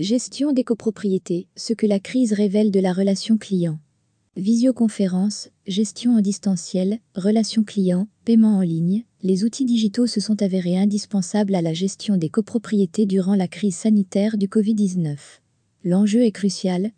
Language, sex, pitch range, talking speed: French, female, 185-220 Hz, 150 wpm